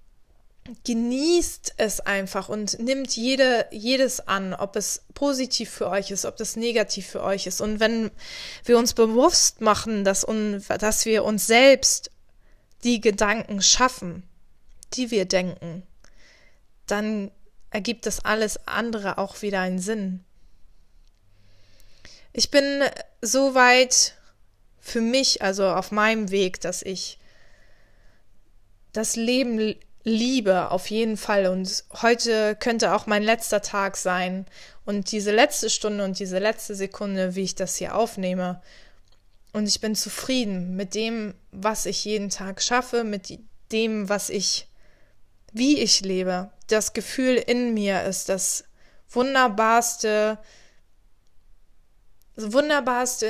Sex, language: female, German